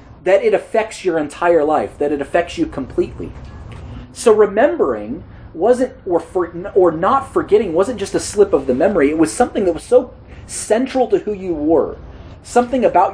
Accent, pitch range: American, 135-220 Hz